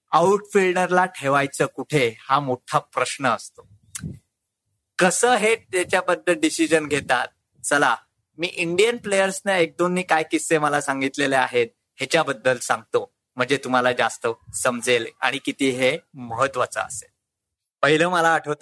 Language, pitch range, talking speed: Marathi, 145-195 Hz, 80 wpm